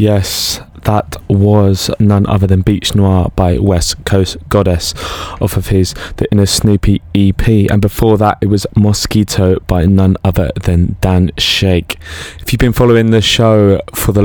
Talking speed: 165 wpm